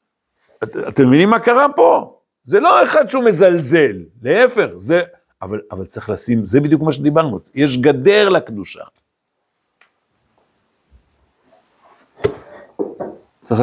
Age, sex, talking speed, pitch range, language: 60-79, male, 110 wpm, 120-195 Hz, Hebrew